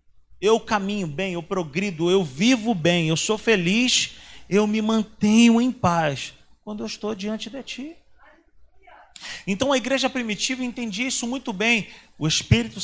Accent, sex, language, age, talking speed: Brazilian, male, Portuguese, 40-59, 150 wpm